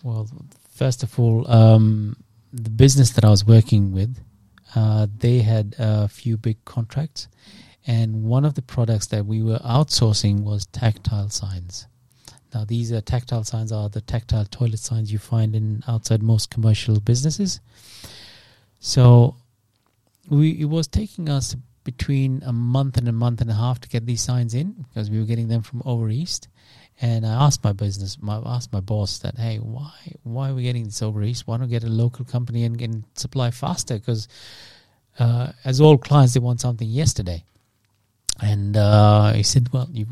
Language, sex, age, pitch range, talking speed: English, male, 30-49, 110-125 Hz, 180 wpm